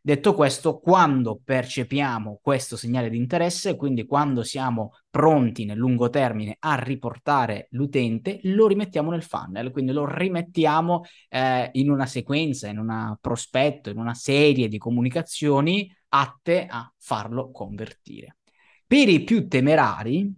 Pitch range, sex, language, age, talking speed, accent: 115-145 Hz, male, Italian, 20-39, 135 wpm, native